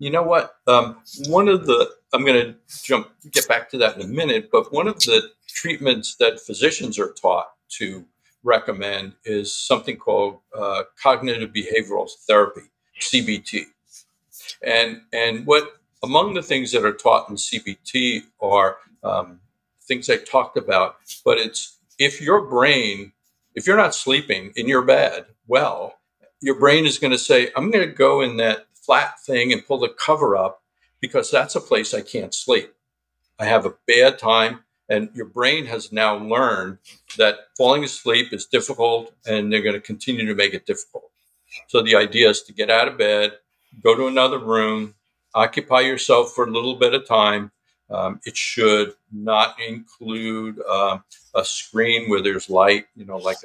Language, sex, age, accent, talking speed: English, male, 50-69, American, 170 wpm